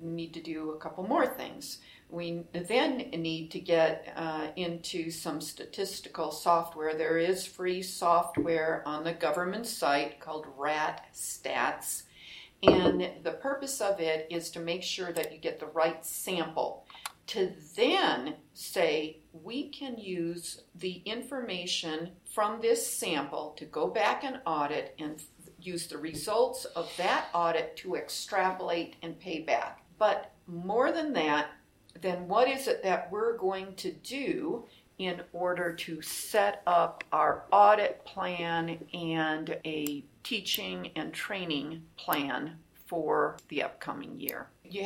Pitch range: 160-200 Hz